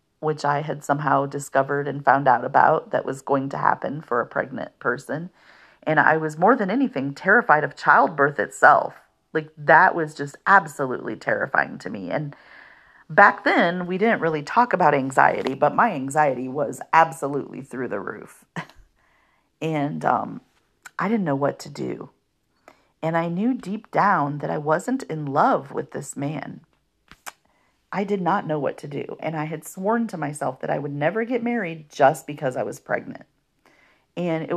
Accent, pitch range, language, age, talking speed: American, 145-185 Hz, English, 40-59, 175 wpm